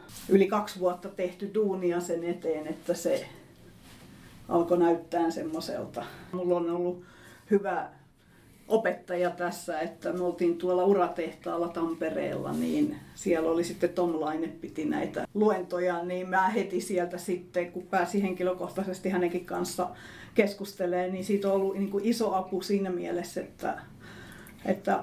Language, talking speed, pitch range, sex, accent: Finnish, 135 wpm, 170-190 Hz, female, native